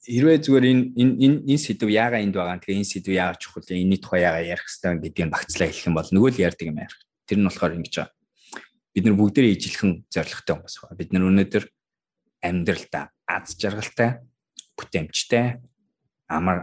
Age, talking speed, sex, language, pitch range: 20-39, 110 wpm, male, English, 90-125 Hz